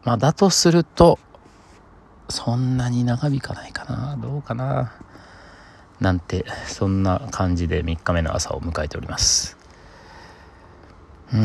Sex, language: male, Japanese